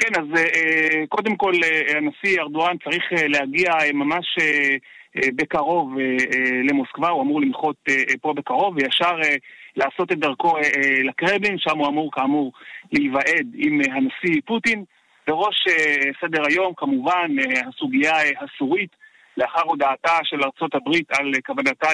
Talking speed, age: 110 wpm, 40-59